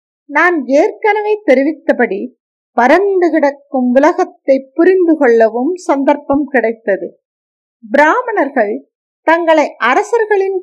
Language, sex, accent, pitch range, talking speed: Tamil, female, native, 260-390 Hz, 75 wpm